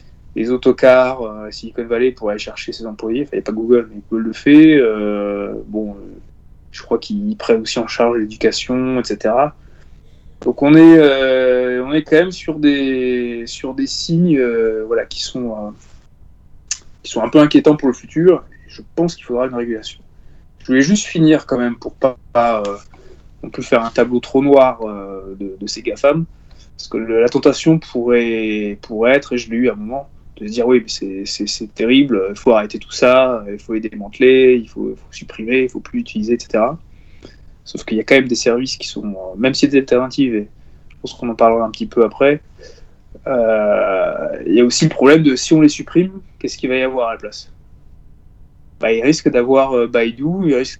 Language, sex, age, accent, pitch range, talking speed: French, male, 20-39, French, 105-140 Hz, 210 wpm